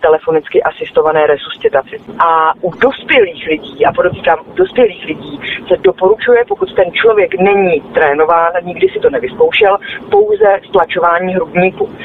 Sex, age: female, 40-59